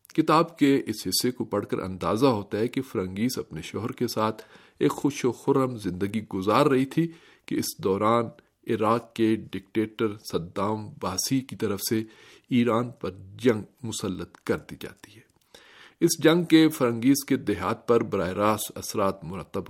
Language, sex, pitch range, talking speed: Urdu, male, 105-125 Hz, 165 wpm